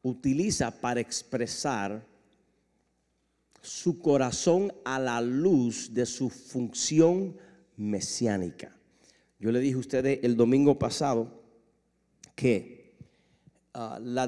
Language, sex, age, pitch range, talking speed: English, male, 50-69, 115-150 Hz, 95 wpm